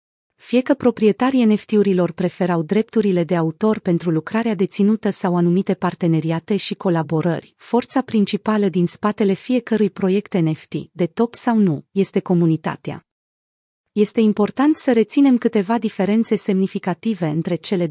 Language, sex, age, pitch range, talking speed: Romanian, female, 30-49, 175-225 Hz, 125 wpm